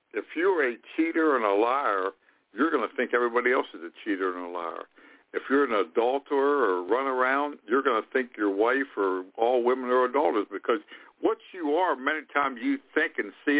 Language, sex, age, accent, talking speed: English, male, 60-79, American, 205 wpm